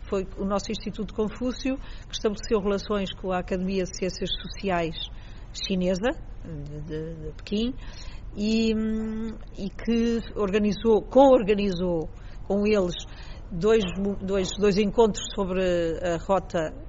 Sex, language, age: female, Chinese, 50-69